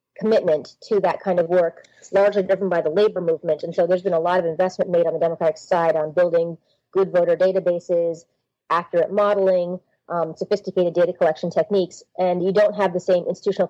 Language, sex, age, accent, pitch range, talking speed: English, female, 30-49, American, 165-195 Hz, 195 wpm